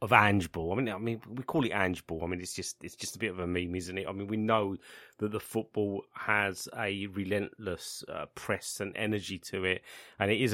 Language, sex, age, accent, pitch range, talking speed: English, male, 30-49, British, 95-120 Hz, 250 wpm